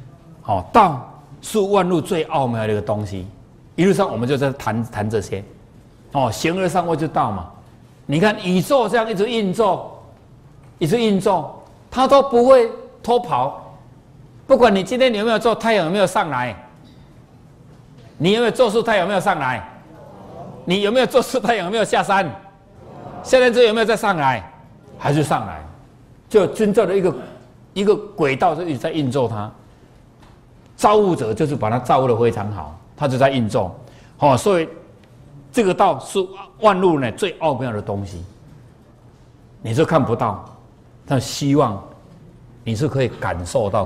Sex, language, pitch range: male, Chinese, 120-195 Hz